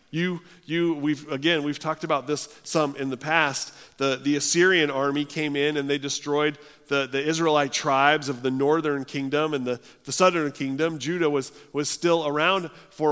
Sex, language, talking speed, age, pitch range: male, English, 185 wpm, 40-59, 130-160 Hz